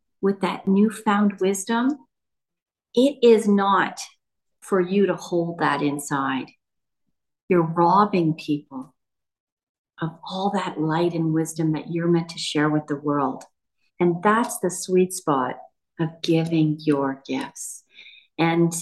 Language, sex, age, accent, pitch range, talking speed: English, female, 40-59, American, 180-230 Hz, 130 wpm